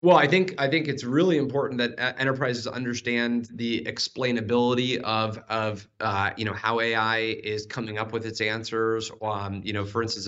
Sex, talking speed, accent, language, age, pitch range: male, 180 wpm, American, English, 20-39, 105-120 Hz